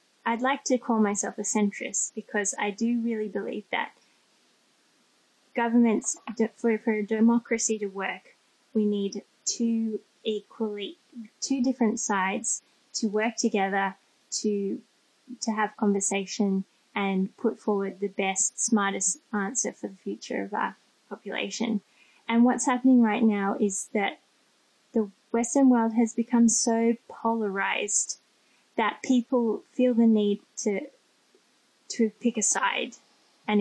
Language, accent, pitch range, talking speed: English, Australian, 200-240 Hz, 130 wpm